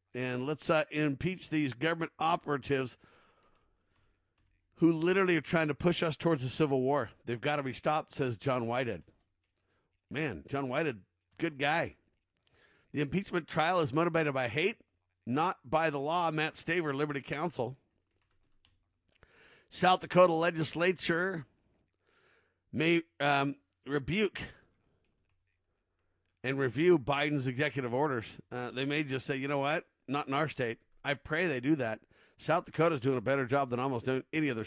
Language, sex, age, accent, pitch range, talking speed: English, male, 50-69, American, 115-160 Hz, 145 wpm